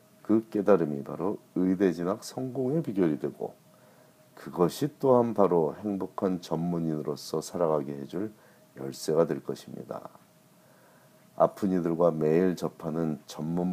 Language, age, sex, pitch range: Korean, 40-59, male, 80-105 Hz